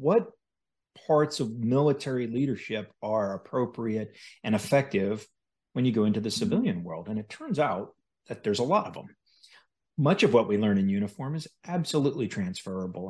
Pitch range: 110-155 Hz